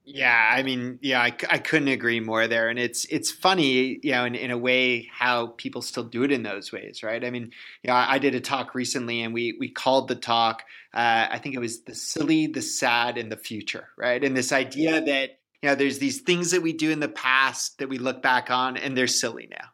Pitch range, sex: 120-145 Hz, male